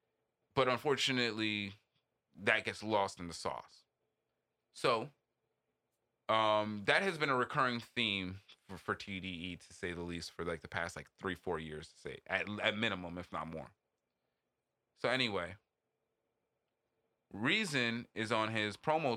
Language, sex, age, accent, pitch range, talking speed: English, male, 30-49, American, 95-135 Hz, 145 wpm